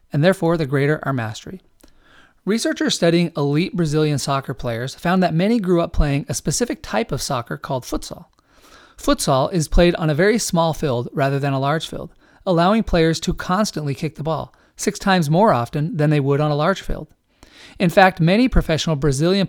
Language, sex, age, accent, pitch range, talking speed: English, male, 30-49, American, 145-190 Hz, 190 wpm